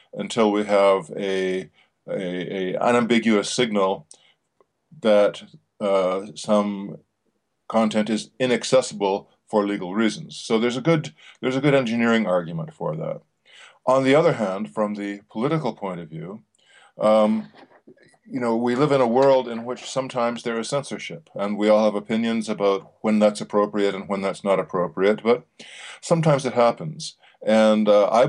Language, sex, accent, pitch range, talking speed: German, male, American, 105-120 Hz, 155 wpm